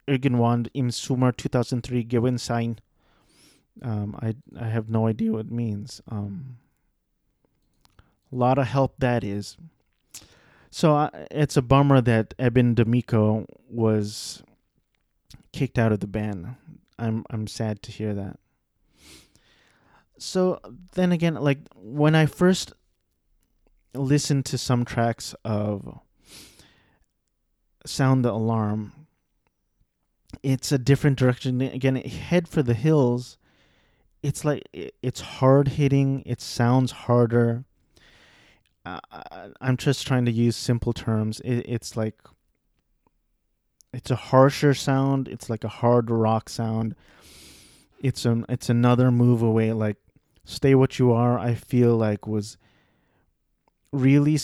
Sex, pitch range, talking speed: male, 110-135 Hz, 120 wpm